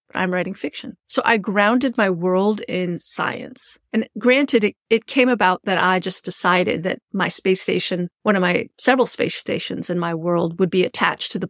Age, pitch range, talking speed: 40-59, 185-220 Hz, 200 wpm